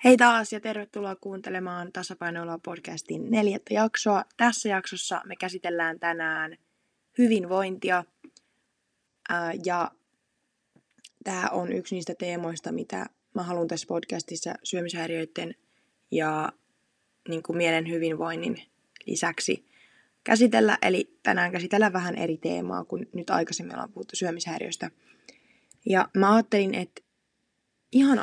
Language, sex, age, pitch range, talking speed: Finnish, female, 20-39, 170-210 Hz, 100 wpm